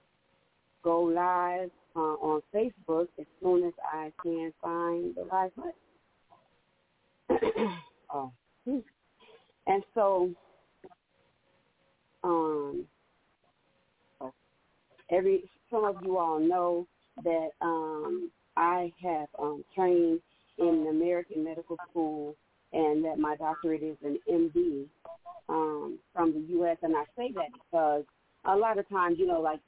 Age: 40-59